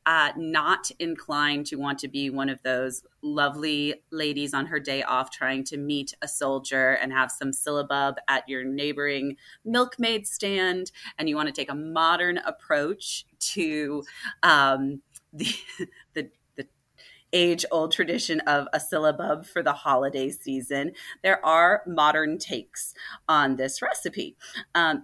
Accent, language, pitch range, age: American, English, 140-180 Hz, 30-49